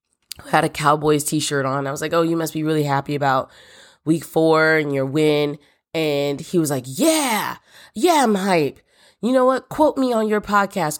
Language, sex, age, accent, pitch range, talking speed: English, female, 20-39, American, 145-190 Hz, 195 wpm